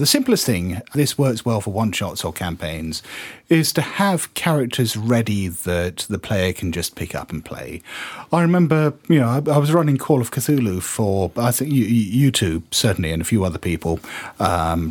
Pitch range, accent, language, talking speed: 95-145 Hz, British, English, 195 wpm